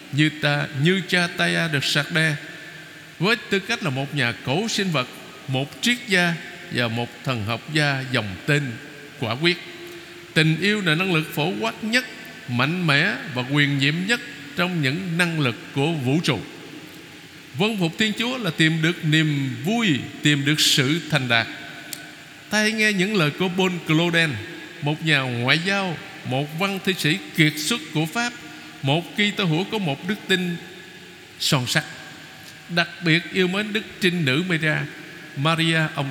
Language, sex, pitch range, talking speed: Vietnamese, male, 145-190 Hz, 175 wpm